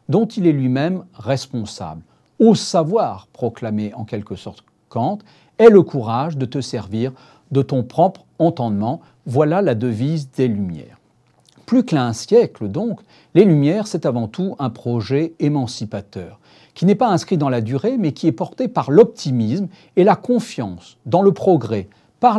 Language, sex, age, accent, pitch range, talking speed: French, male, 40-59, French, 120-180 Hz, 160 wpm